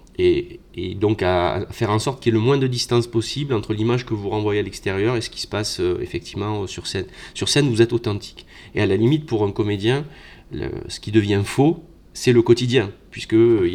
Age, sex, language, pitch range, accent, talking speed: 30-49, male, French, 100-130 Hz, French, 215 wpm